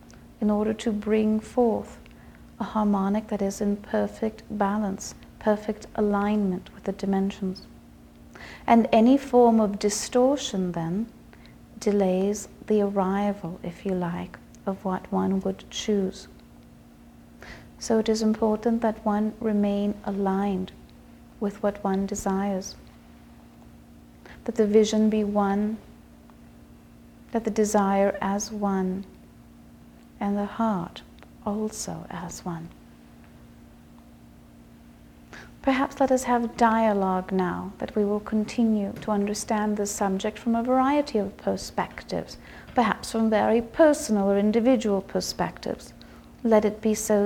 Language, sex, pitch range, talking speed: English, female, 195-220 Hz, 115 wpm